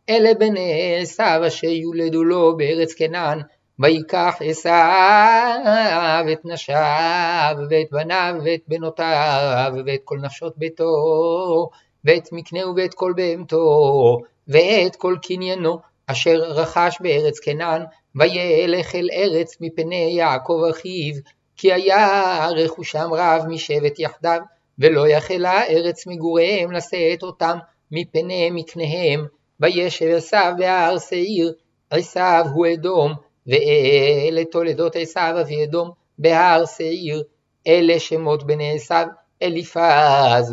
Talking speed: 105 wpm